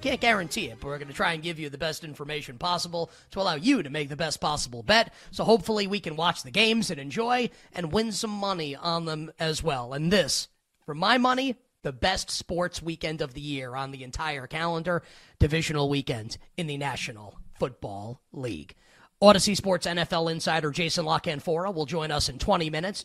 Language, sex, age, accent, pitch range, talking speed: English, male, 30-49, American, 150-205 Hz, 200 wpm